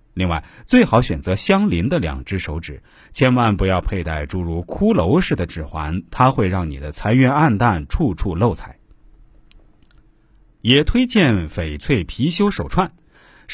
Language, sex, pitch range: Chinese, male, 90-140 Hz